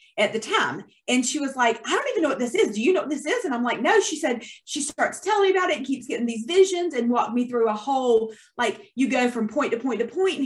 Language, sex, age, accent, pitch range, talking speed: English, female, 30-49, American, 220-295 Hz, 305 wpm